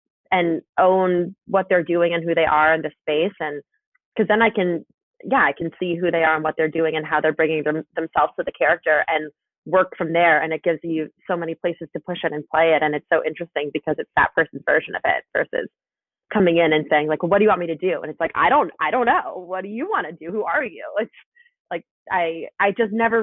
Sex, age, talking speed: female, 20-39, 260 wpm